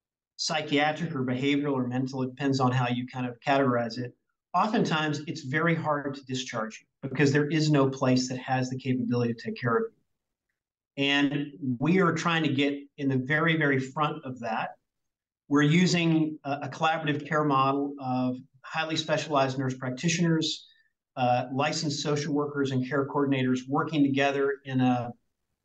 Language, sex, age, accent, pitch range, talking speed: English, male, 40-59, American, 130-150 Hz, 165 wpm